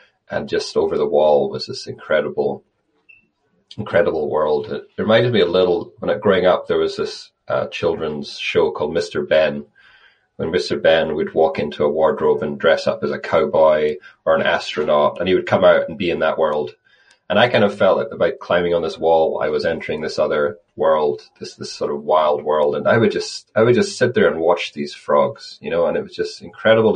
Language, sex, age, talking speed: English, male, 30-49, 220 wpm